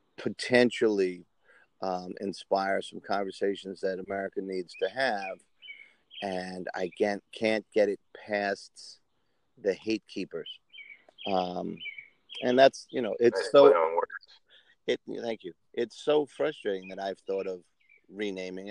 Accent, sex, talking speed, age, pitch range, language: American, male, 120 wpm, 40-59, 90-110 Hz, English